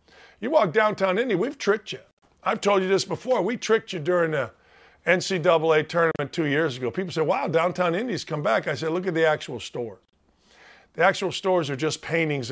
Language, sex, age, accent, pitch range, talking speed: English, male, 50-69, American, 150-195 Hz, 200 wpm